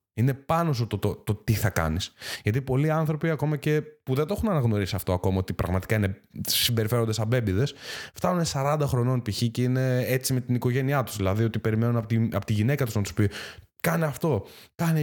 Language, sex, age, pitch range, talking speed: Greek, male, 20-39, 105-150 Hz, 210 wpm